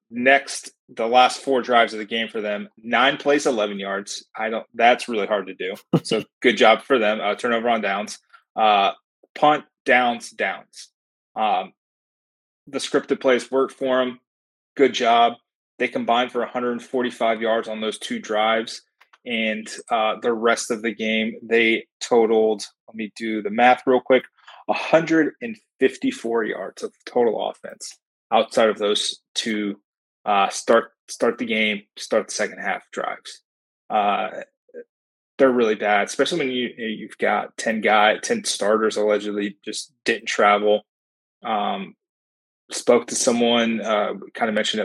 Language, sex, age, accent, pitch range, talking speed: English, male, 20-39, American, 110-130 Hz, 150 wpm